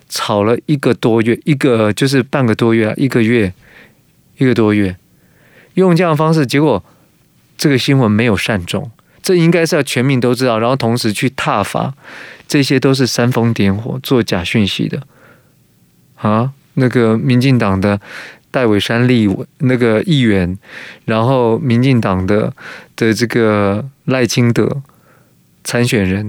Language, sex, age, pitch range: Chinese, male, 20-39, 110-135 Hz